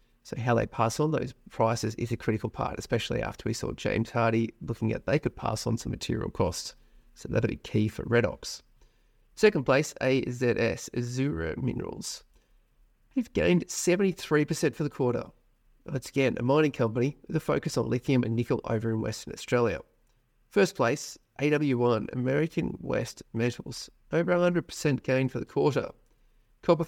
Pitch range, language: 115-140 Hz, English